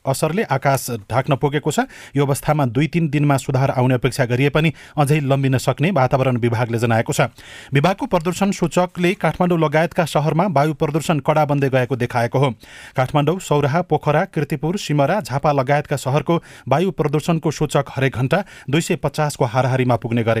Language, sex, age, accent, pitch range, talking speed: English, male, 30-49, Indian, 130-155 Hz, 120 wpm